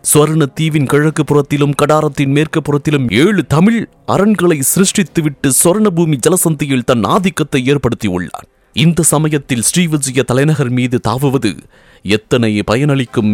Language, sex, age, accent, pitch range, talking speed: English, male, 30-49, Indian, 110-150 Hz, 110 wpm